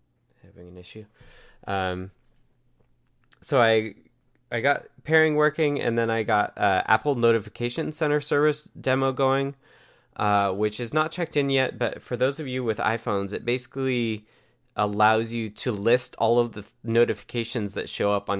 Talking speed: 160 wpm